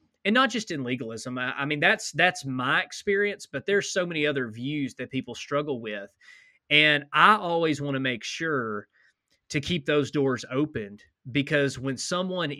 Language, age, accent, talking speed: English, 20-39, American, 170 wpm